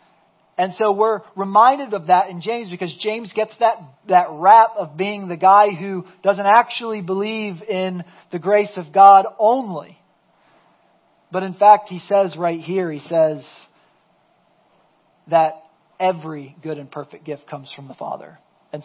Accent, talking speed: American, 155 wpm